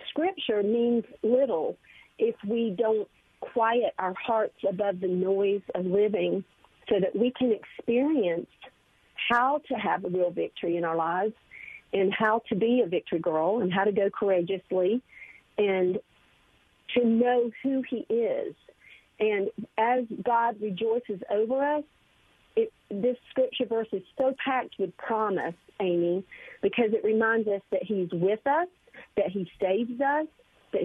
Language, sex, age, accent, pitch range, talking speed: English, female, 40-59, American, 195-250 Hz, 145 wpm